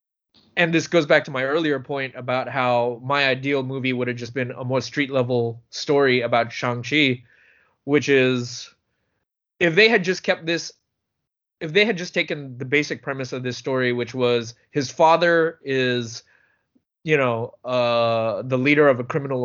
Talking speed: 175 wpm